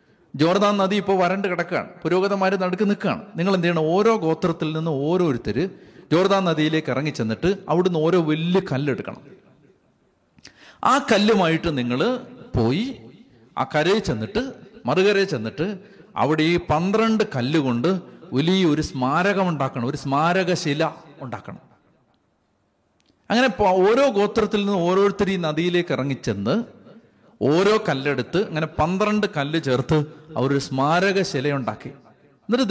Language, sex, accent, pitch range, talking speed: Malayalam, male, native, 140-185 Hz, 115 wpm